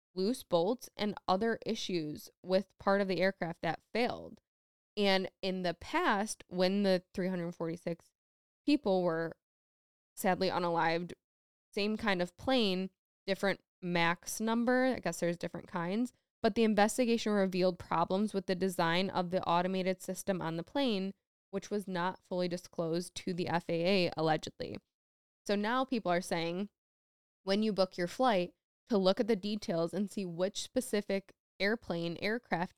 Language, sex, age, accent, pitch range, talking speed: English, female, 10-29, American, 180-220 Hz, 145 wpm